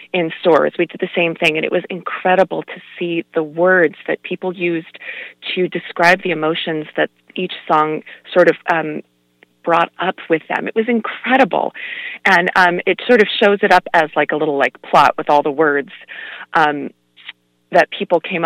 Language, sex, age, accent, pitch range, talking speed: English, female, 30-49, American, 155-200 Hz, 185 wpm